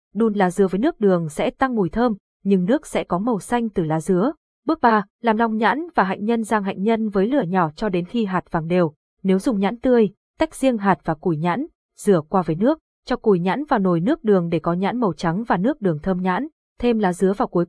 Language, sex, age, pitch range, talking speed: Vietnamese, female, 20-39, 190-240 Hz, 255 wpm